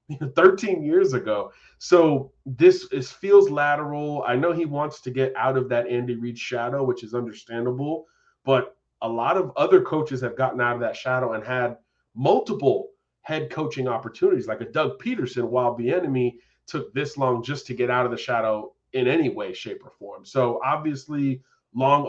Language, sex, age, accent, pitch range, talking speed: English, male, 30-49, American, 120-145 Hz, 180 wpm